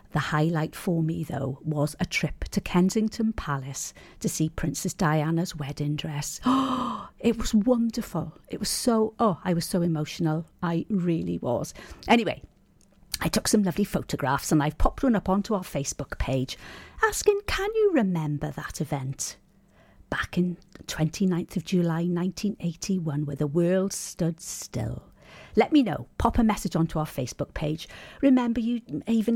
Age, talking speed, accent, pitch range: 50-69, 155 wpm, British, 155-210 Hz